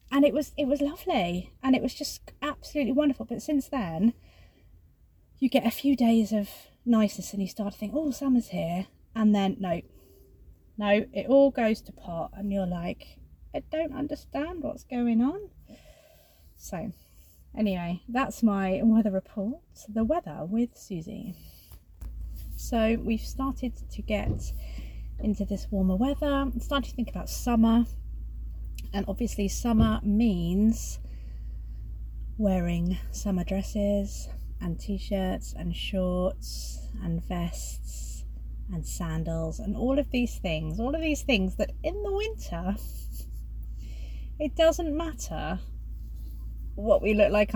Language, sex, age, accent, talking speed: English, female, 30-49, British, 135 wpm